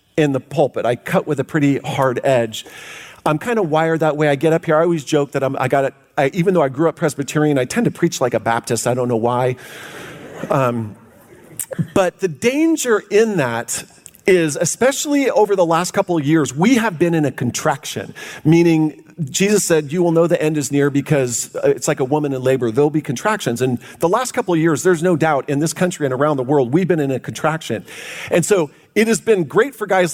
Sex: male